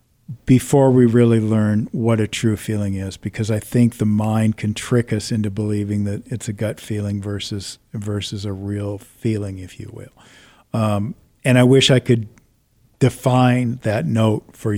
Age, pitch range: 50-69, 105-125 Hz